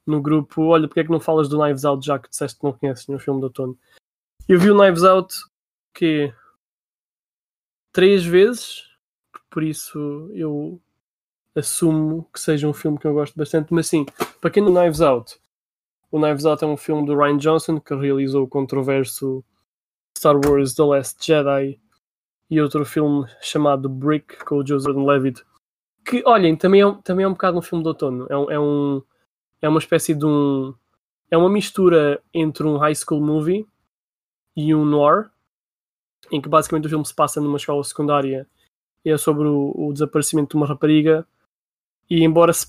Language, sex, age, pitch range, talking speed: Portuguese, male, 20-39, 140-160 Hz, 180 wpm